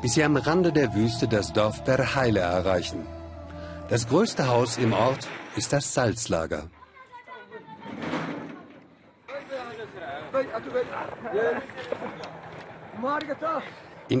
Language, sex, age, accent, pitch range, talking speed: German, male, 50-69, German, 105-150 Hz, 80 wpm